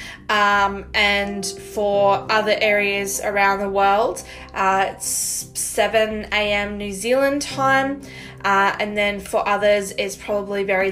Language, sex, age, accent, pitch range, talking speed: English, female, 20-39, Australian, 195-230 Hz, 125 wpm